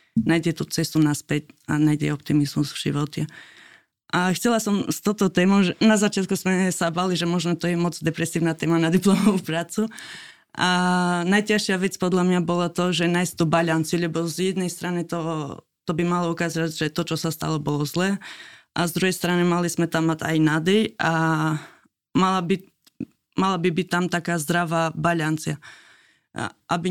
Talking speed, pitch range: 175 wpm, 165-185 Hz